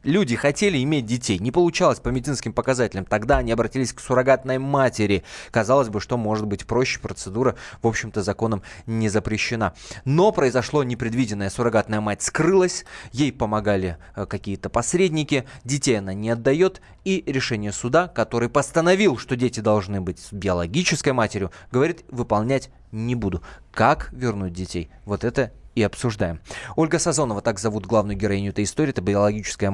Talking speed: 150 wpm